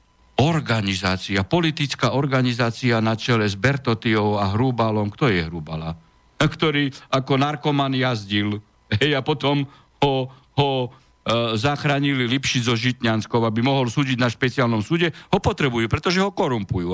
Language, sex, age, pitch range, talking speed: Slovak, male, 60-79, 115-155 Hz, 130 wpm